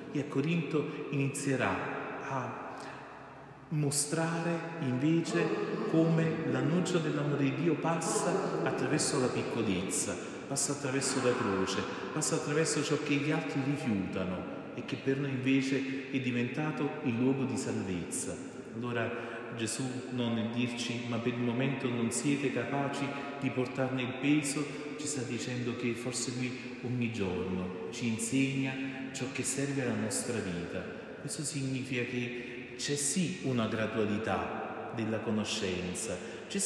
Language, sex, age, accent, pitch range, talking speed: Italian, male, 40-59, native, 120-140 Hz, 130 wpm